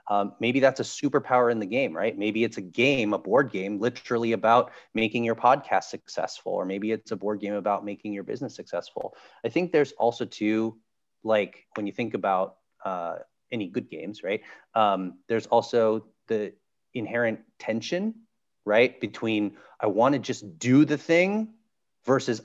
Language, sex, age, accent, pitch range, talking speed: English, male, 30-49, American, 105-125 Hz, 170 wpm